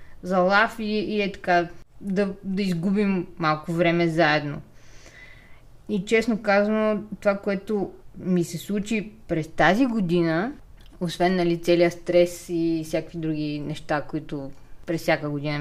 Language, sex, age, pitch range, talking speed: Bulgarian, female, 20-39, 170-205 Hz, 130 wpm